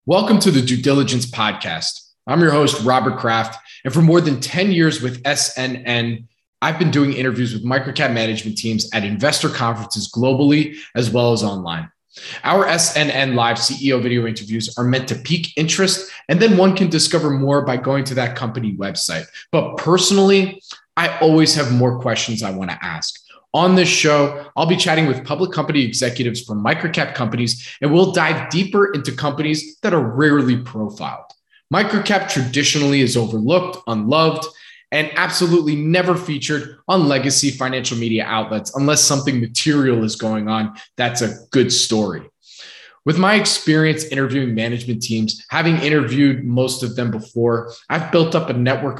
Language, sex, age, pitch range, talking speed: English, male, 20-39, 120-155 Hz, 165 wpm